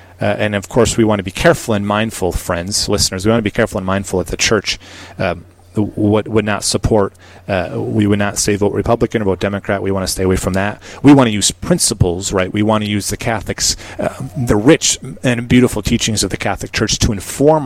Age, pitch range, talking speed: 30-49, 95-110 Hz, 240 wpm